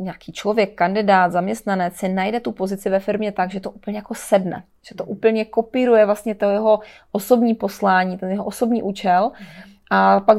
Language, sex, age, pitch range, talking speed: Czech, female, 20-39, 190-210 Hz, 180 wpm